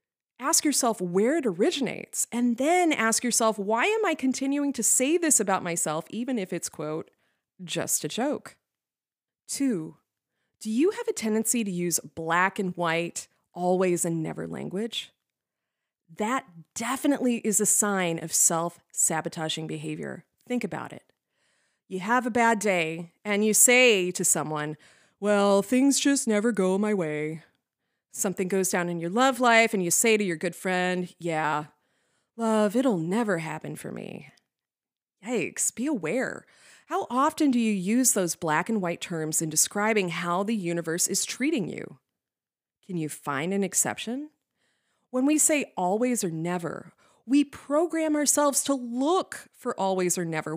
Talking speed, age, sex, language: 155 wpm, 30-49, female, English